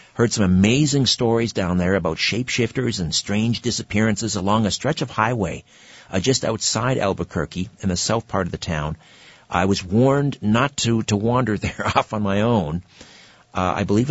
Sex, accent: male, American